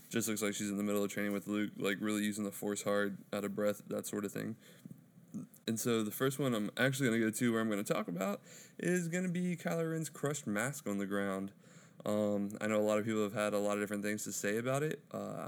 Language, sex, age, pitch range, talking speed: English, male, 20-39, 105-140 Hz, 275 wpm